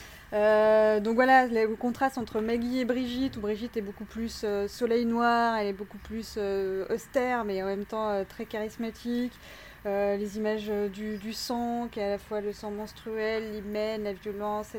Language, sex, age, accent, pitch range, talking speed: French, female, 20-39, French, 210-245 Hz, 195 wpm